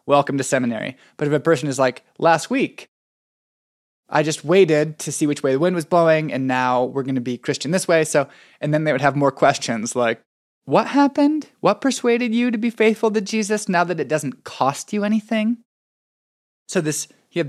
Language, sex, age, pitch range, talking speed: English, male, 20-39, 140-185 Hz, 210 wpm